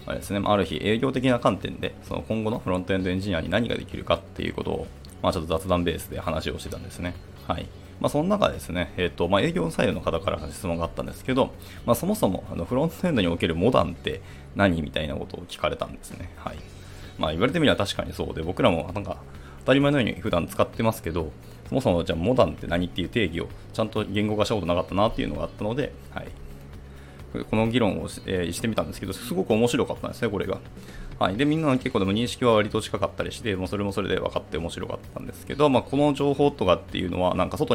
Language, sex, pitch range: Japanese, male, 85-110 Hz